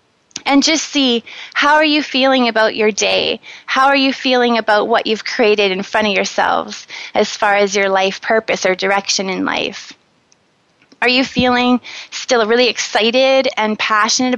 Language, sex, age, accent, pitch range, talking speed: English, female, 20-39, American, 210-260 Hz, 165 wpm